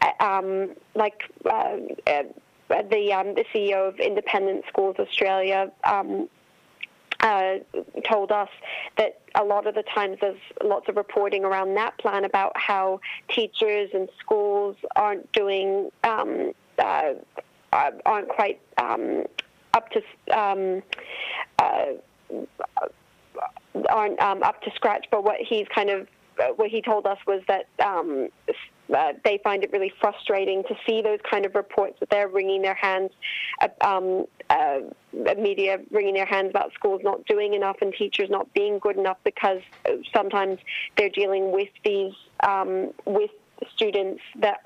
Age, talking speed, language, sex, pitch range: 40-59, 135 wpm, English, female, 195-220 Hz